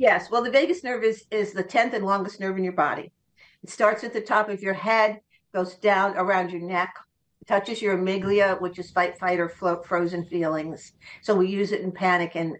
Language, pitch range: English, 175-210 Hz